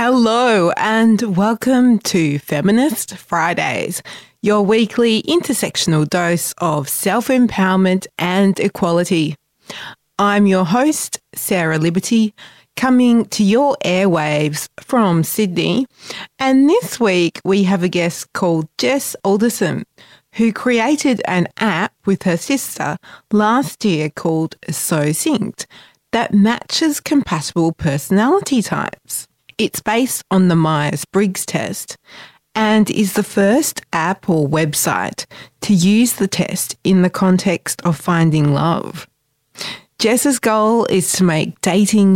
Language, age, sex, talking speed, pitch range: English, 30-49, female, 115 wpm, 170-230 Hz